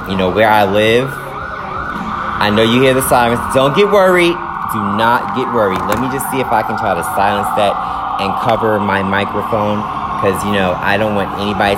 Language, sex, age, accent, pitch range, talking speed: English, male, 30-49, American, 95-120 Hz, 205 wpm